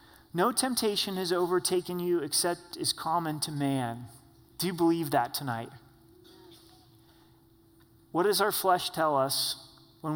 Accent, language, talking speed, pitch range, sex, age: American, English, 130 wpm, 135-175 Hz, male, 30-49